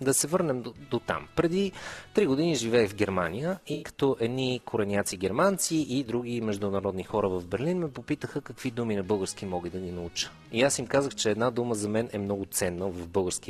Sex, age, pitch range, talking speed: male, 30-49, 105-165 Hz, 210 wpm